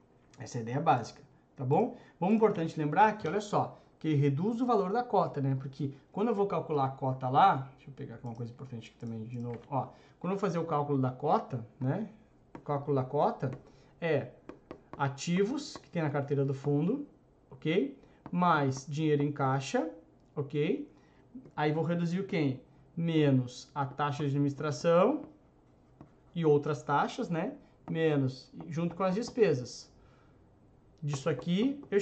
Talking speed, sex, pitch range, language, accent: 165 wpm, male, 140-200 Hz, Portuguese, Brazilian